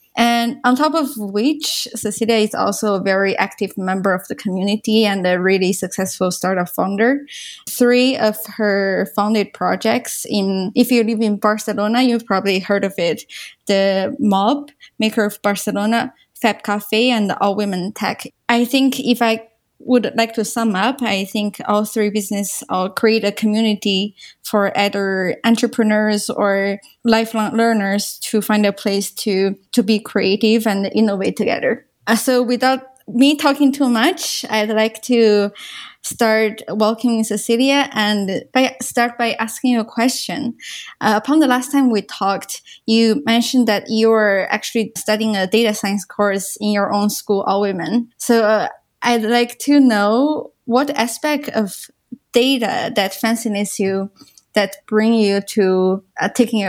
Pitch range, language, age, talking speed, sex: 200-240 Hz, English, 20-39, 150 wpm, female